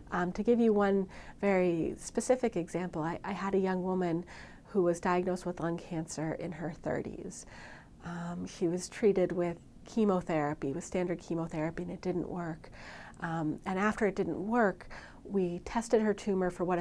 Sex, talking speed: female, 170 wpm